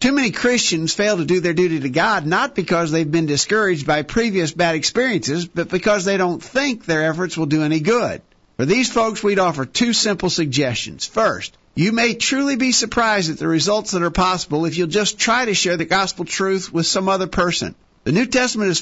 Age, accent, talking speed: 50-69, American, 215 wpm